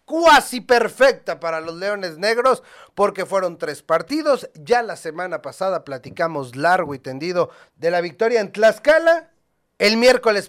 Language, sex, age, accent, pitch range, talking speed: Spanish, male, 40-59, Mexican, 155-240 Hz, 145 wpm